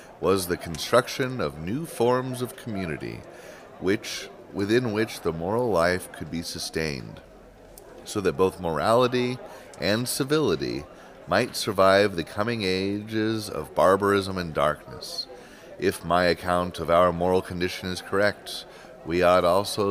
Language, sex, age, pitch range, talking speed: English, male, 30-49, 90-120 Hz, 135 wpm